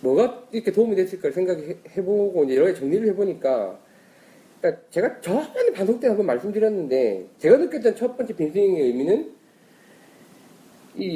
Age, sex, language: 30-49, male, Korean